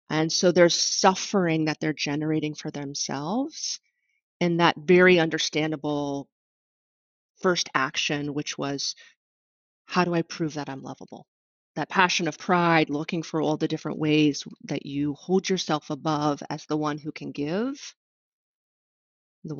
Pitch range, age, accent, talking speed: 155-190 Hz, 30-49, American, 140 wpm